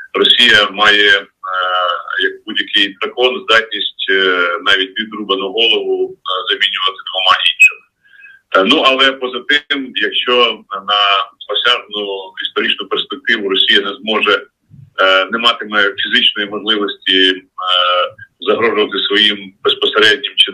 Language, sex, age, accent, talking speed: Ukrainian, male, 40-59, native, 110 wpm